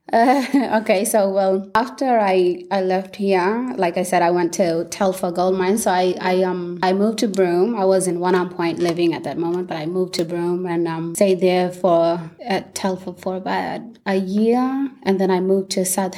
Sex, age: female, 20-39